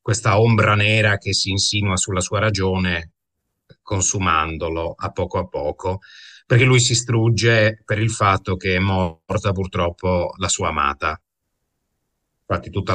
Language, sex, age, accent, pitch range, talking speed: Italian, male, 40-59, native, 90-110 Hz, 140 wpm